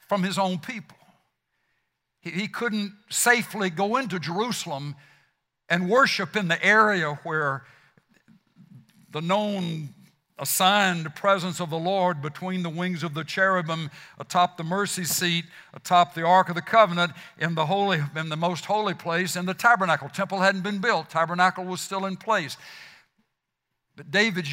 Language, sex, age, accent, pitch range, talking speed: English, male, 60-79, American, 160-200 Hz, 155 wpm